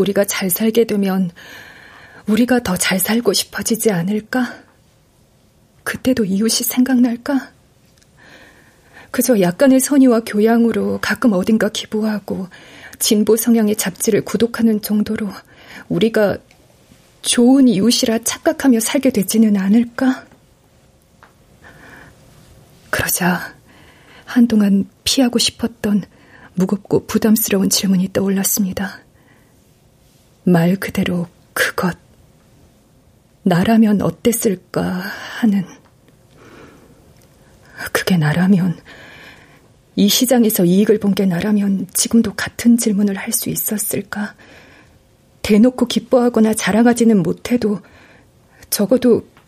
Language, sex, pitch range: Korean, female, 195-235 Hz